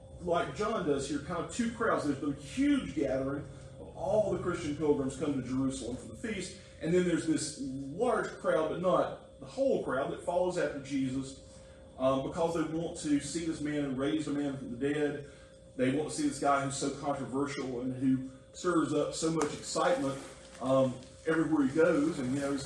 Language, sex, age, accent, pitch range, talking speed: English, male, 40-59, American, 130-155 Hz, 205 wpm